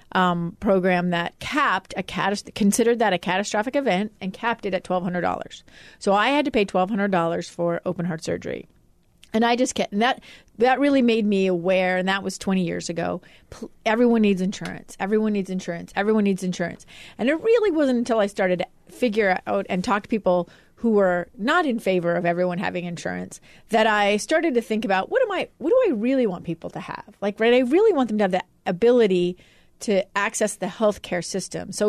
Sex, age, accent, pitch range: female, 30-49, American, 175-225 Hz